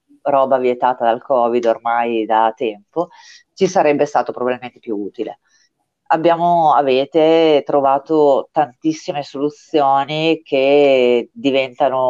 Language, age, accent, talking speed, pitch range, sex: Italian, 30-49, native, 100 wpm, 115-135 Hz, female